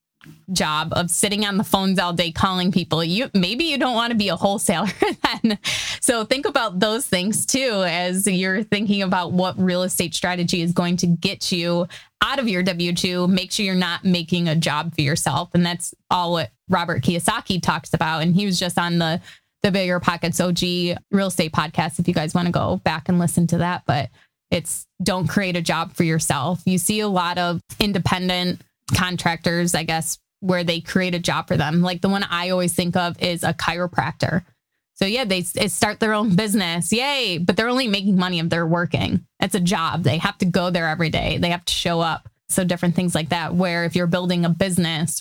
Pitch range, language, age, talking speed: 170-190 Hz, English, 20-39, 210 wpm